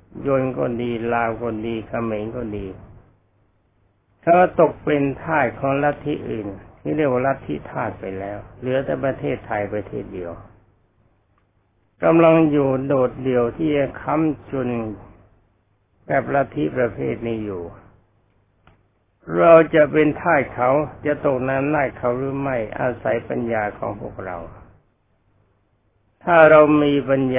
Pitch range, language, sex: 105-135 Hz, Thai, male